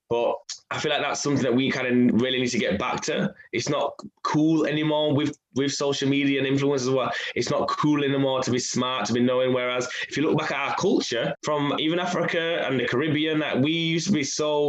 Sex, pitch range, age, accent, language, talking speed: male, 120-150 Hz, 10-29, British, English, 240 wpm